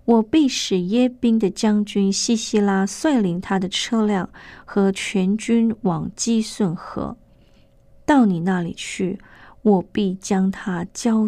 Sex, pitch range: female, 185-230 Hz